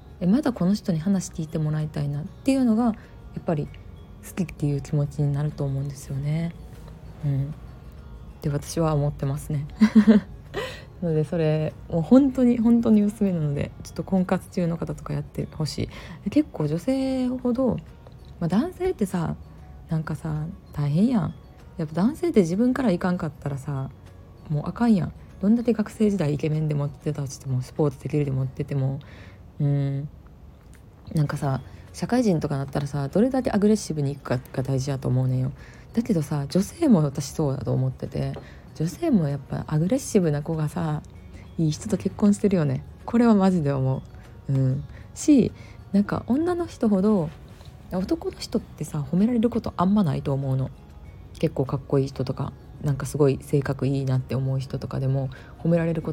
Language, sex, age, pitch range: Japanese, female, 20-39, 135-195 Hz